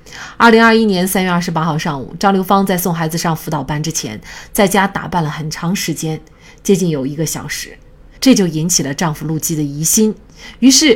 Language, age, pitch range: Chinese, 30-49, 160-230 Hz